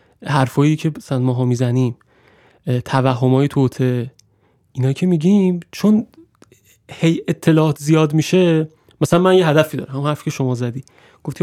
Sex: male